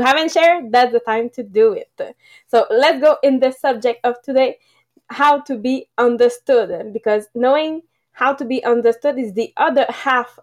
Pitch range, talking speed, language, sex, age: 225-285 Hz, 175 wpm, English, female, 20-39